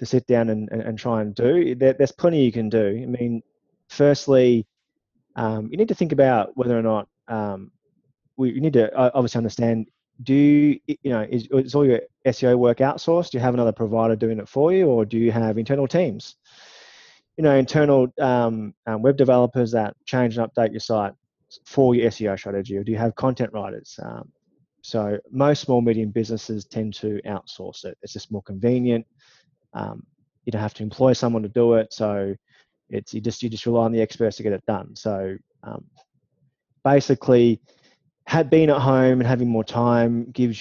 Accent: Australian